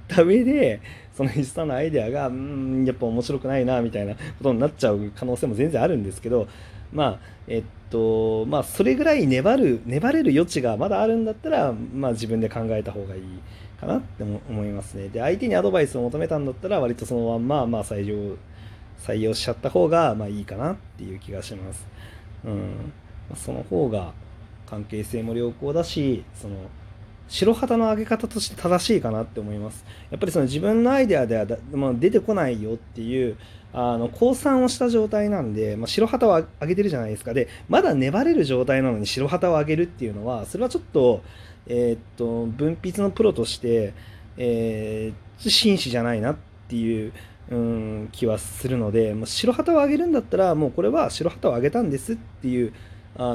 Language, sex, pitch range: Japanese, male, 105-150 Hz